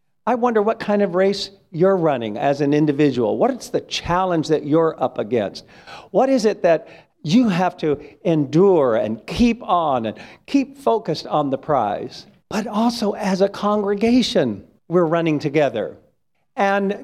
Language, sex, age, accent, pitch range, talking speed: English, male, 50-69, American, 175-240 Hz, 160 wpm